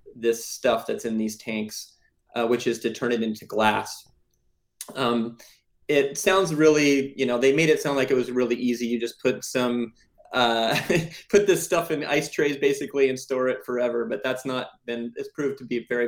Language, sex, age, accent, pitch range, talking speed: English, male, 20-39, American, 115-135 Hz, 200 wpm